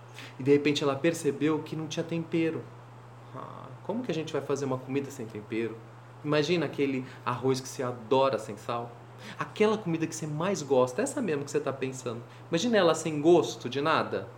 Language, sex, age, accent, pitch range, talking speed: Portuguese, male, 30-49, Brazilian, 125-170 Hz, 190 wpm